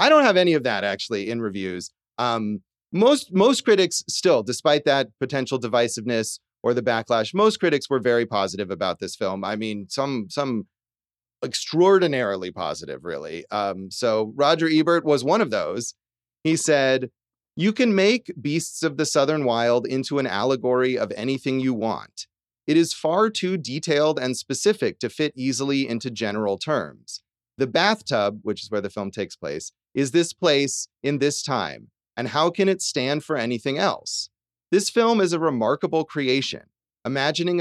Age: 30-49